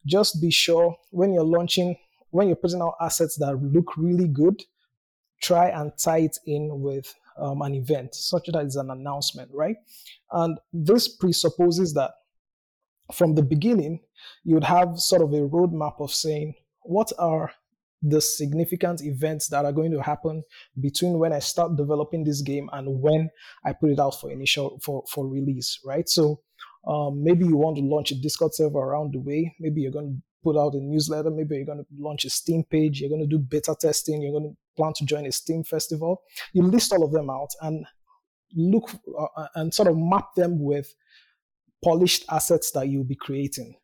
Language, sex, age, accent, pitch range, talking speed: English, male, 20-39, Nigerian, 145-170 Hz, 190 wpm